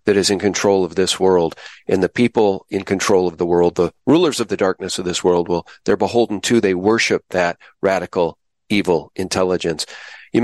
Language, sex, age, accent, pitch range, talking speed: English, male, 40-59, American, 115-170 Hz, 195 wpm